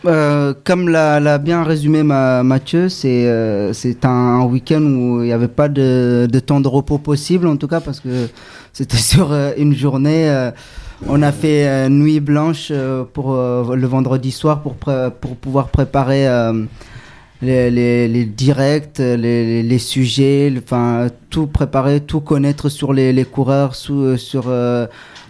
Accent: French